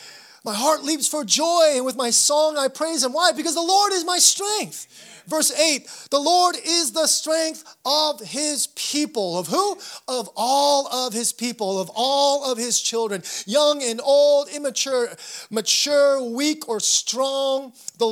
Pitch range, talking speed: 170-265 Hz, 165 wpm